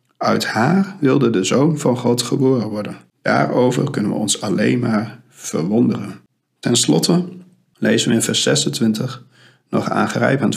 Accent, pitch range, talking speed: Dutch, 110-135 Hz, 150 wpm